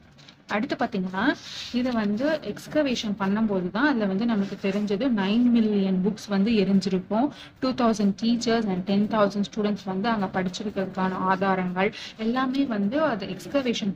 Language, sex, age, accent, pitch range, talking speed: Tamil, female, 30-49, native, 195-245 Hz, 130 wpm